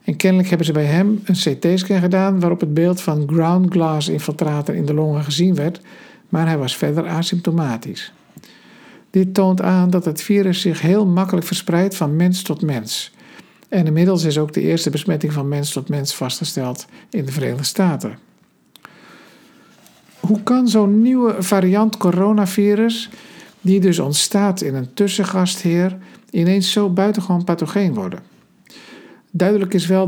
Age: 50-69